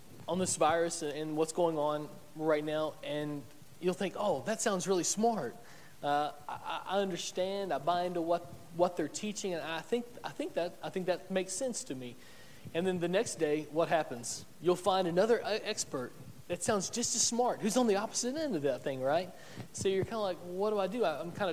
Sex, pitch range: male, 145-185 Hz